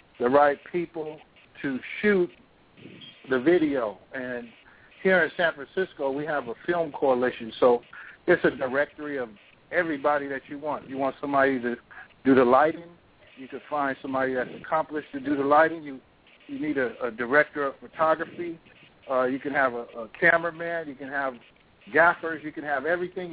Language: English